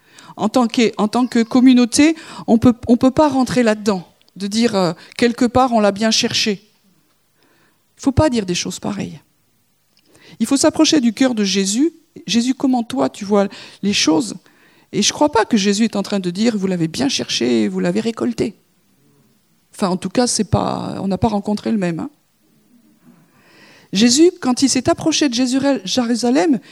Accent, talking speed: French, 185 wpm